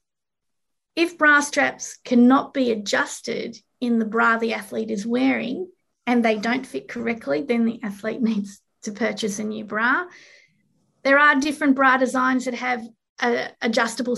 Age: 30-49